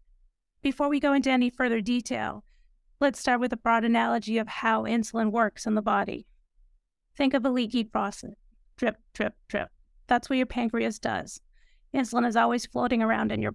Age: 30-49